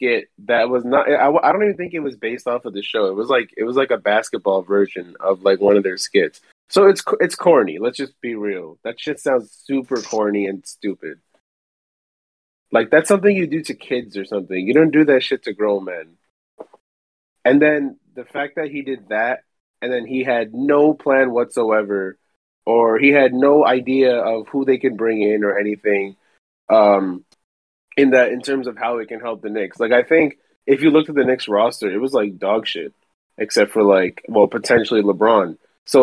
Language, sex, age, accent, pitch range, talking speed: English, male, 20-39, American, 105-140 Hz, 205 wpm